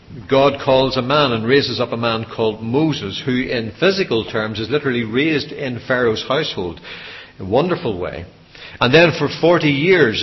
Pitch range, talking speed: 120-150 Hz, 175 wpm